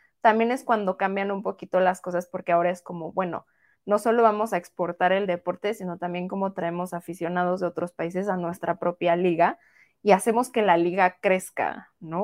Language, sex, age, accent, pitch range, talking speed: Spanish, female, 20-39, Mexican, 175-215 Hz, 190 wpm